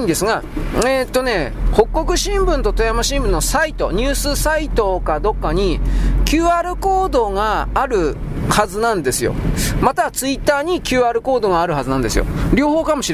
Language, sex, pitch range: Japanese, male, 205-295 Hz